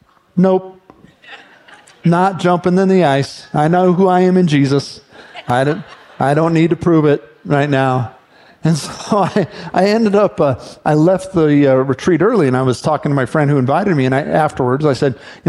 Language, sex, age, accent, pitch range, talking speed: English, male, 40-59, American, 140-190 Hz, 195 wpm